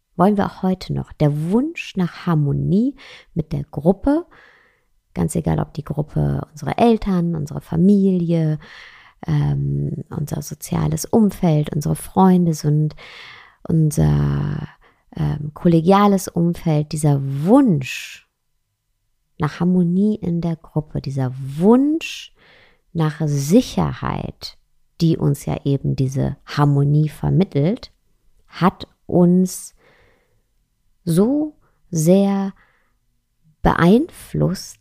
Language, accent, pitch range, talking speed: German, German, 145-195 Hz, 95 wpm